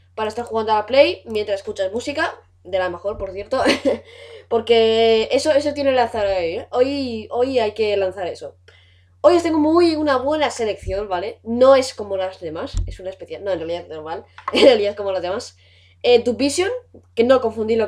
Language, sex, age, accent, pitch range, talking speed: Spanish, female, 20-39, Spanish, 195-275 Hz, 195 wpm